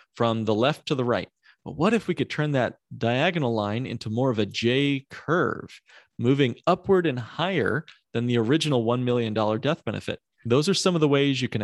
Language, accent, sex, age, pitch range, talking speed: English, American, male, 40-59, 110-140 Hz, 205 wpm